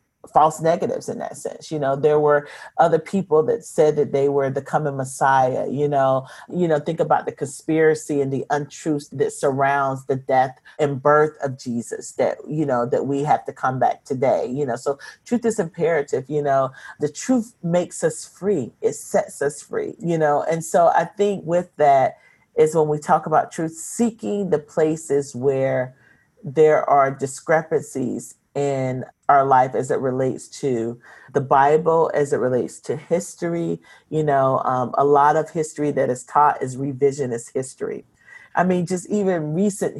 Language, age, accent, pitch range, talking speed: English, 40-59, American, 135-170 Hz, 175 wpm